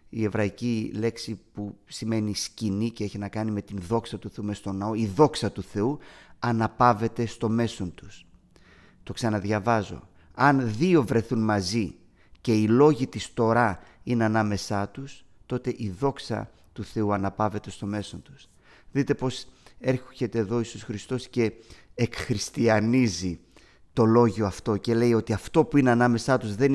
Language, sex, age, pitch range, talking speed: Greek, male, 30-49, 105-125 Hz, 155 wpm